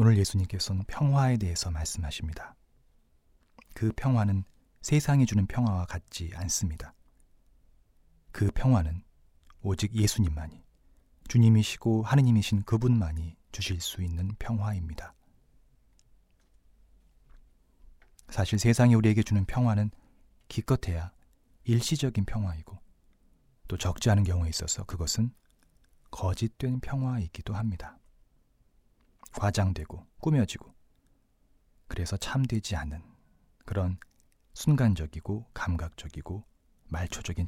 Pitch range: 85-110 Hz